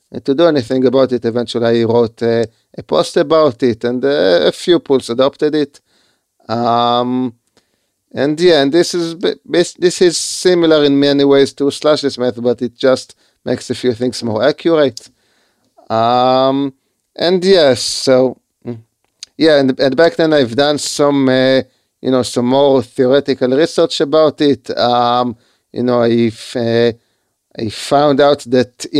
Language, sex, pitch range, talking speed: English, male, 120-140 Hz, 160 wpm